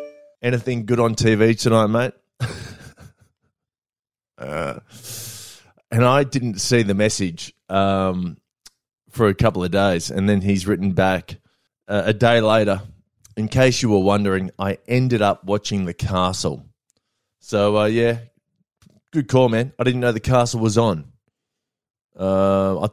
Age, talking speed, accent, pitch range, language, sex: 20-39, 140 wpm, Australian, 100-125 Hz, English, male